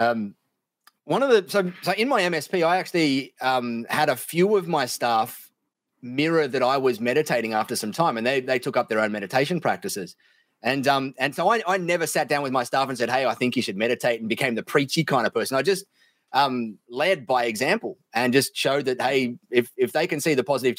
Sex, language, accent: male, English, Australian